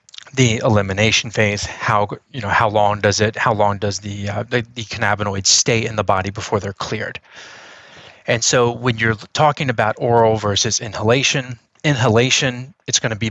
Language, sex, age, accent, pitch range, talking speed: English, male, 30-49, American, 100-120 Hz, 175 wpm